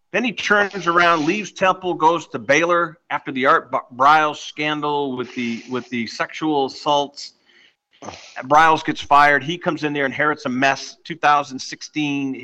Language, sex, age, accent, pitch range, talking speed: English, male, 50-69, American, 140-175 Hz, 150 wpm